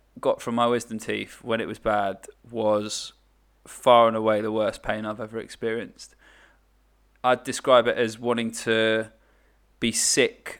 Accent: British